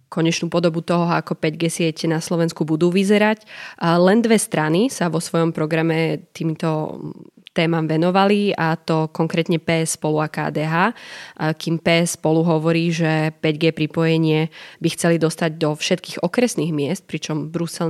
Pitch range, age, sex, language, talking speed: 155-175 Hz, 20-39, female, Slovak, 150 wpm